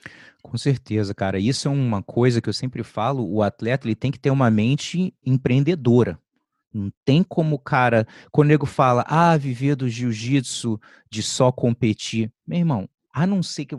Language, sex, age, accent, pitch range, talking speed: English, male, 30-49, Brazilian, 115-150 Hz, 175 wpm